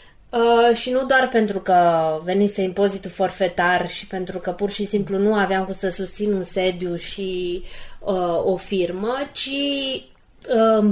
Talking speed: 145 wpm